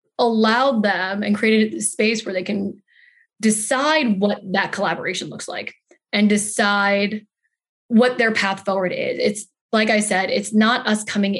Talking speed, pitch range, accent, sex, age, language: 160 wpm, 200-240 Hz, American, female, 20-39, English